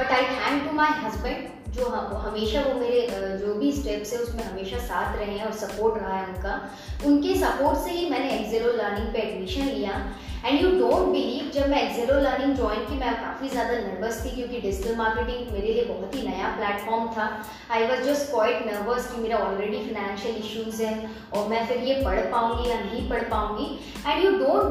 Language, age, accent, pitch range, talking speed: Hindi, 20-39, native, 225-280 Hz, 200 wpm